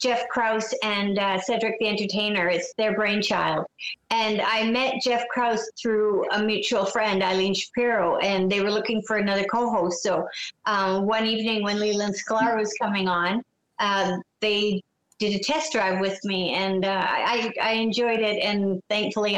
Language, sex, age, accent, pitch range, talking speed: English, female, 50-69, American, 195-235 Hz, 165 wpm